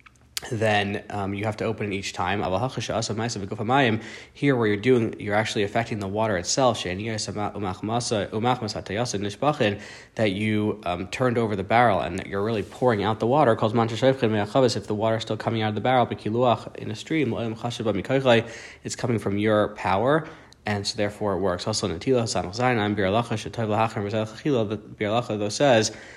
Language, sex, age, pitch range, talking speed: English, male, 20-39, 100-120 Hz, 140 wpm